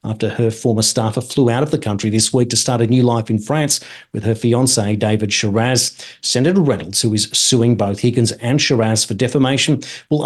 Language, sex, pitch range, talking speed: English, male, 115-135 Hz, 205 wpm